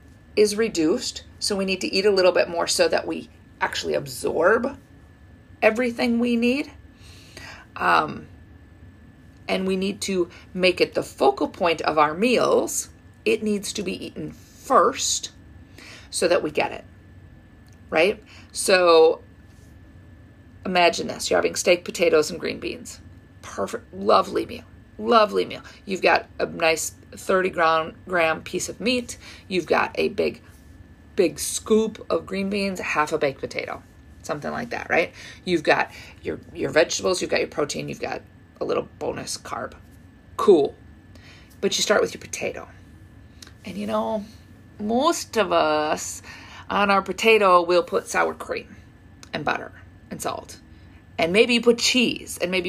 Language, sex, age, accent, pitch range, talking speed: English, female, 40-59, American, 160-215 Hz, 150 wpm